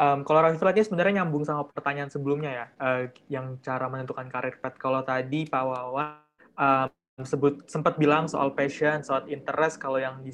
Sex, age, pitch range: male, 20-39, 130-155 Hz